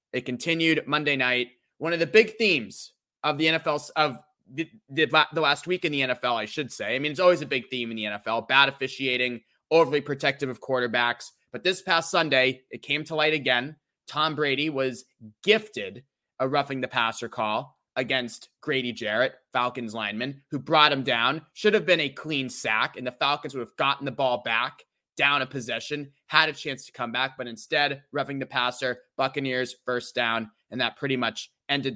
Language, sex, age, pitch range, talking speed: English, male, 20-39, 125-165 Hz, 195 wpm